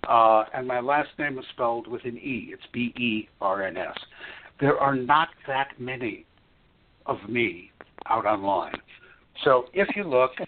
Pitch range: 120-150 Hz